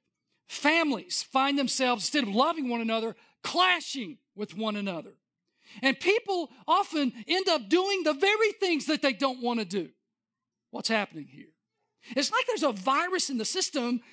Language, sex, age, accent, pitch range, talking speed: English, male, 40-59, American, 235-335 Hz, 160 wpm